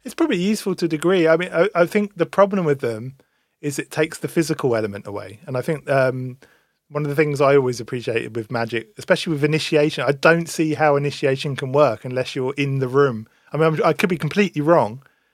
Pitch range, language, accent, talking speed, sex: 125-155 Hz, English, British, 225 wpm, male